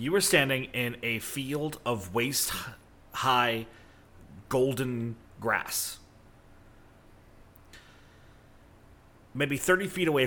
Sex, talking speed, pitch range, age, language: male, 80 wpm, 105-135 Hz, 30-49, English